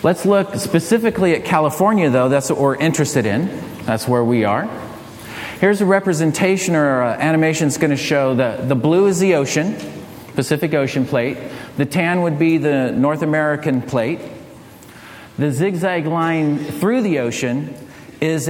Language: English